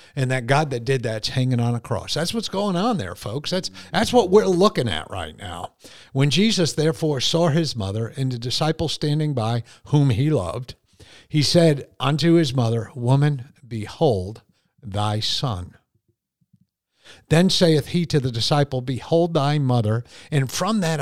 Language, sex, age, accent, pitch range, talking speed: English, male, 50-69, American, 120-155 Hz, 170 wpm